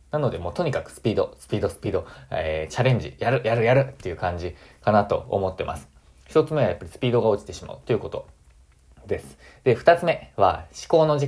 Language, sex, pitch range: Japanese, male, 90-130 Hz